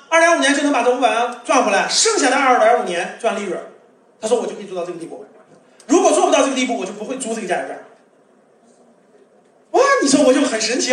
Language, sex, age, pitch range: Chinese, male, 30-49, 220-290 Hz